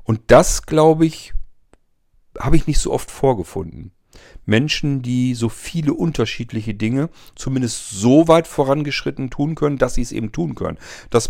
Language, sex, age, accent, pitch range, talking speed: German, male, 40-59, German, 110-130 Hz, 155 wpm